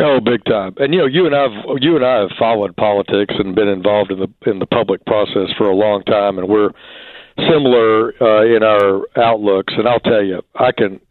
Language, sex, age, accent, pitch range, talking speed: English, male, 60-79, American, 100-115 Hz, 220 wpm